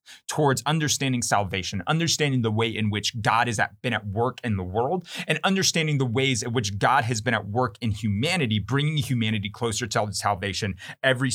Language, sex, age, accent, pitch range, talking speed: English, male, 30-49, American, 115-150 Hz, 185 wpm